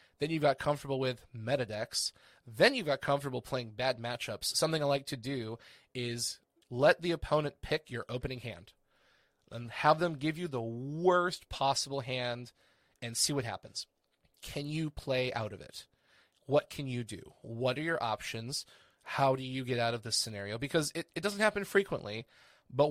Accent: American